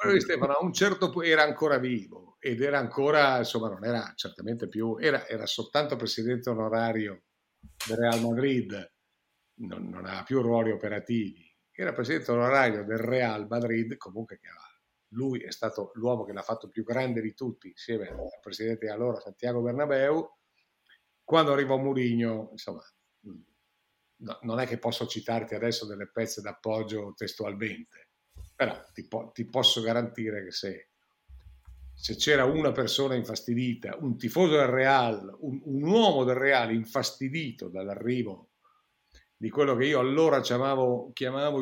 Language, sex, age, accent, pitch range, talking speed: Italian, male, 50-69, native, 110-135 Hz, 140 wpm